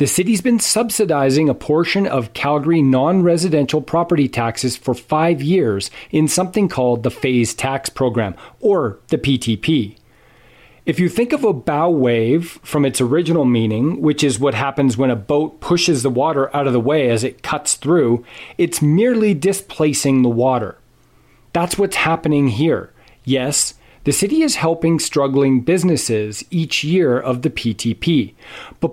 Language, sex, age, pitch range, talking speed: English, male, 40-59, 125-170 Hz, 155 wpm